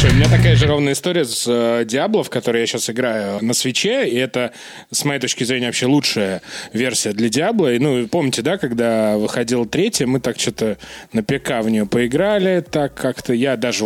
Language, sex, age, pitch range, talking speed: Russian, male, 20-39, 115-145 Hz, 195 wpm